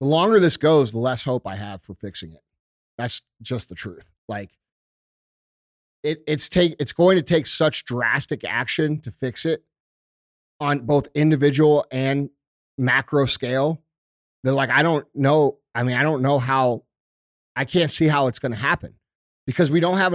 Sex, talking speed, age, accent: male, 175 wpm, 30-49, American